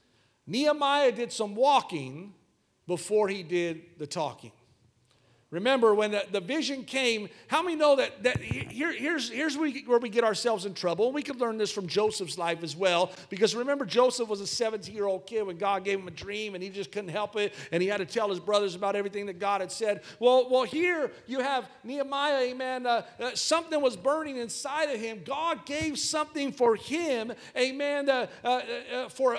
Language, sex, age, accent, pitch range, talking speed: English, male, 50-69, American, 225-295 Hz, 200 wpm